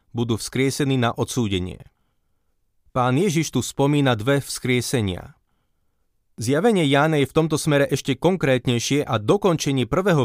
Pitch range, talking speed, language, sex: 120-145 Hz, 125 wpm, Slovak, male